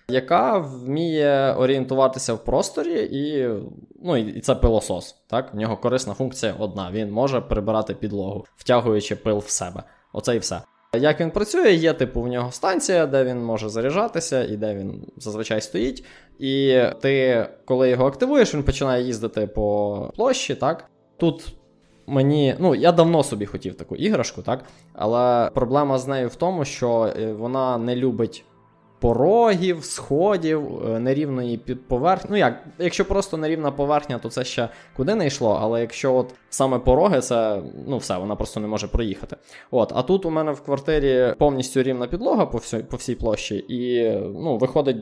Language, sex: Ukrainian, male